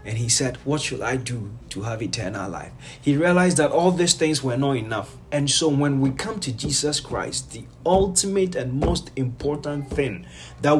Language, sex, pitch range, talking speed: English, male, 125-160 Hz, 195 wpm